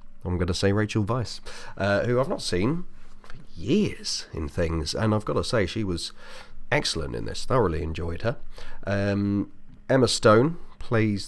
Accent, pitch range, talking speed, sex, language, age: British, 85-105 Hz, 170 wpm, male, English, 30-49